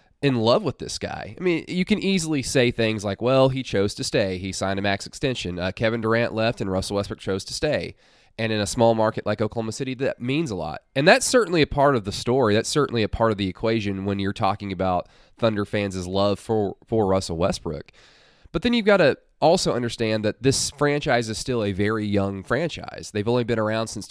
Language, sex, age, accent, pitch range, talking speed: English, male, 20-39, American, 100-130 Hz, 230 wpm